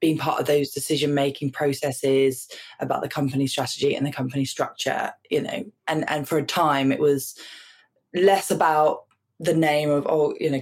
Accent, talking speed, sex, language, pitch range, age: British, 175 wpm, female, English, 140-160 Hz, 20-39